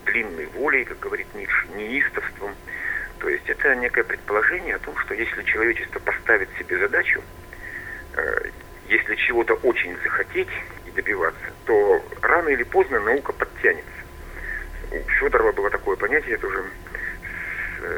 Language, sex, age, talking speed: Russian, male, 50-69, 135 wpm